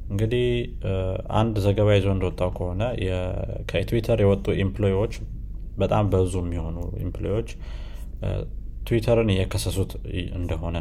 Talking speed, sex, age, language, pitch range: 85 wpm, male, 20-39, Amharic, 90-100 Hz